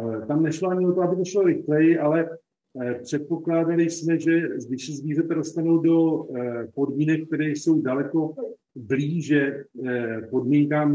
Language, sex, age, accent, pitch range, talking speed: Czech, male, 50-69, native, 120-150 Hz, 120 wpm